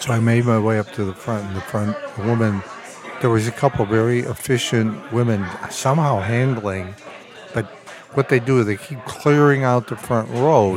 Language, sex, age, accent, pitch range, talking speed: English, male, 60-79, American, 105-135 Hz, 200 wpm